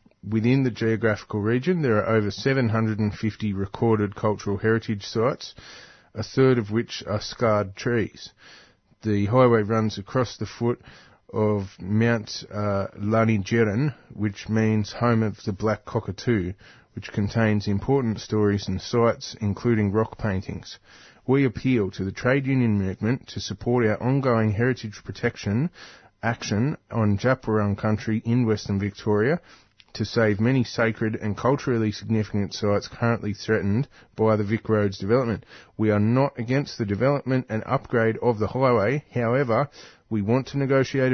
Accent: Australian